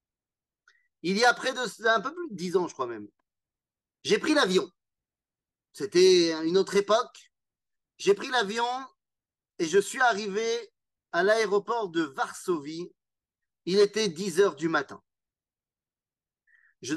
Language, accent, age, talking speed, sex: French, French, 40-59, 140 wpm, male